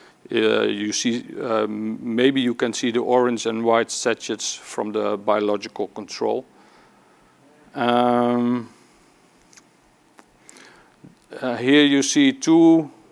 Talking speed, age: 105 wpm, 50-69